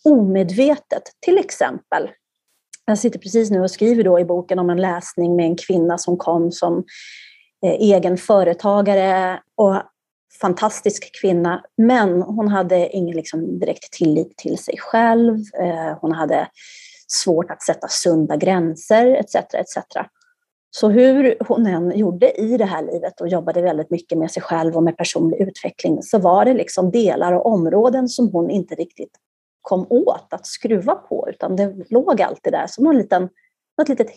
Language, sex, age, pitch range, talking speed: Swedish, female, 30-49, 175-235 Hz, 155 wpm